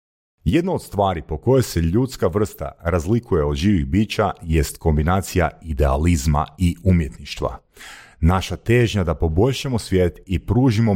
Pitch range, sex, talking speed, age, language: 75-95 Hz, male, 130 wpm, 40-59, Croatian